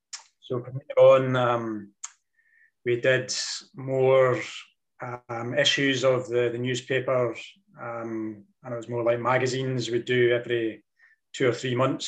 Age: 20-39